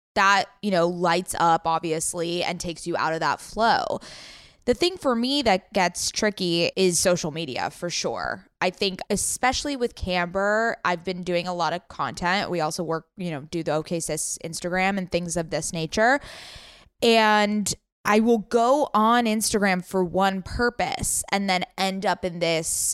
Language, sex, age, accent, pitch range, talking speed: English, female, 20-39, American, 170-215 Hz, 175 wpm